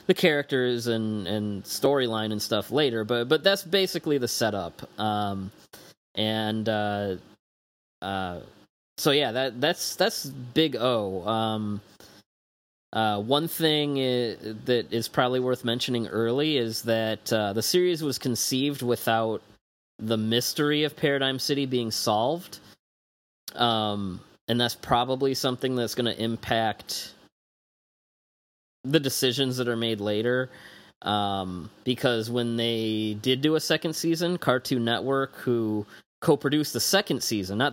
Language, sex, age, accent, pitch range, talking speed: English, male, 20-39, American, 105-130 Hz, 130 wpm